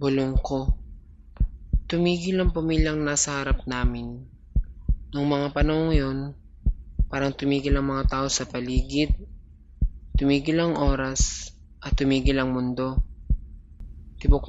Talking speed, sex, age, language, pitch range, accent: 110 wpm, male, 20-39, Filipino, 115-145 Hz, native